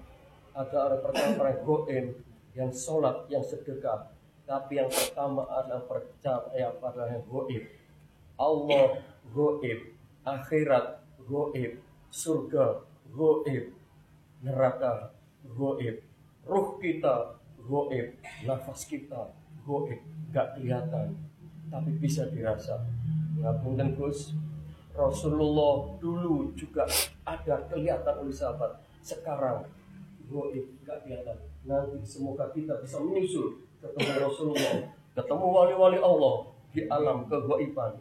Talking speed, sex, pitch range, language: 95 wpm, male, 130-160 Hz, Indonesian